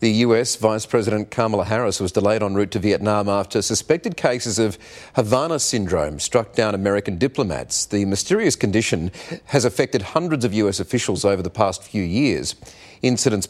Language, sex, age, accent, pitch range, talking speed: English, male, 40-59, Australian, 100-125 Hz, 165 wpm